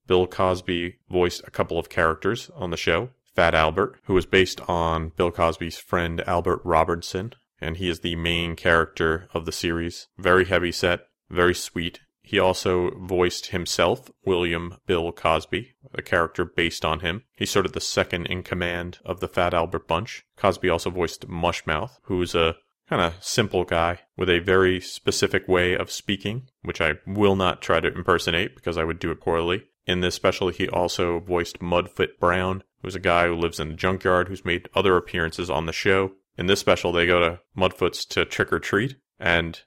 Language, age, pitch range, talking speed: English, 30-49, 85-95 Hz, 185 wpm